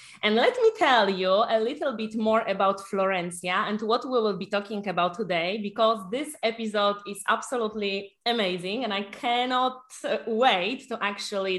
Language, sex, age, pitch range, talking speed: English, female, 20-39, 195-275 Hz, 160 wpm